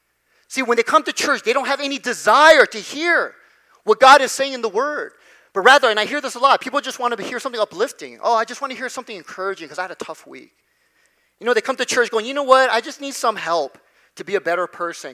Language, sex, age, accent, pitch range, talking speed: English, male, 30-49, American, 215-305 Hz, 275 wpm